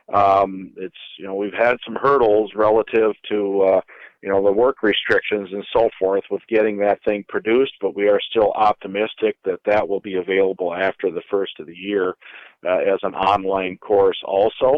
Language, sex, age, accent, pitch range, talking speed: English, male, 50-69, American, 95-115 Hz, 185 wpm